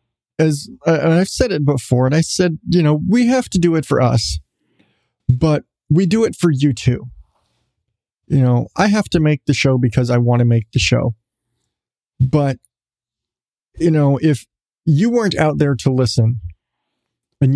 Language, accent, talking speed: English, American, 170 wpm